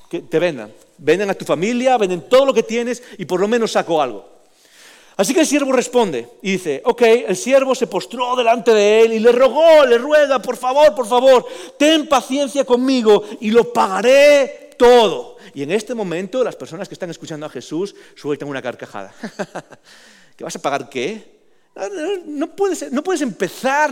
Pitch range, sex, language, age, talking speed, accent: 195-275 Hz, male, English, 40-59, 185 wpm, Spanish